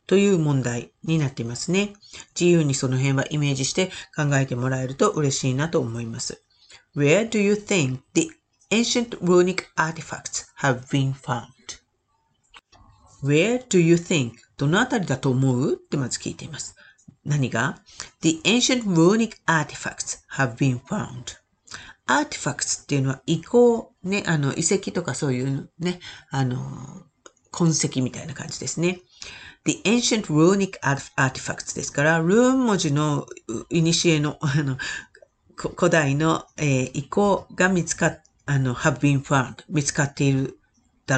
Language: Japanese